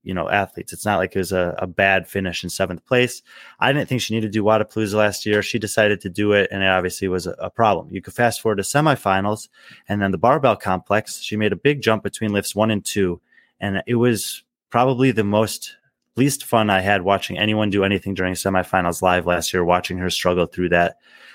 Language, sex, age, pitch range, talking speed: English, male, 20-39, 95-115 Hz, 230 wpm